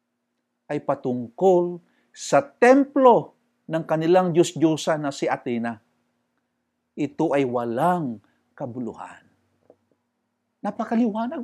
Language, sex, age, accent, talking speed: English, male, 50-69, Filipino, 80 wpm